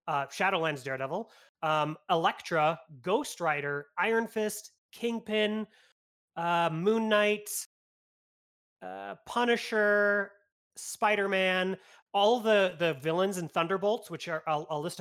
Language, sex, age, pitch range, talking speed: English, male, 30-49, 150-195 Hz, 110 wpm